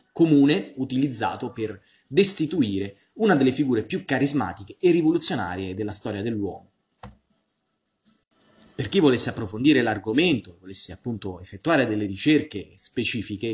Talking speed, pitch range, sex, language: 110 wpm, 100-140 Hz, male, Italian